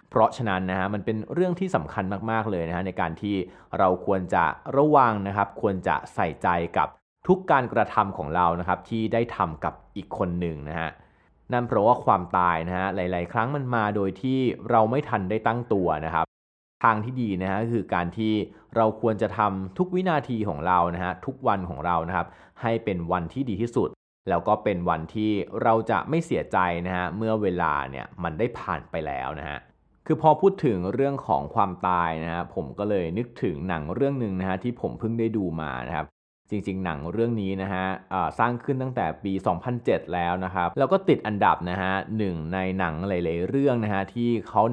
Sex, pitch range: male, 85-115 Hz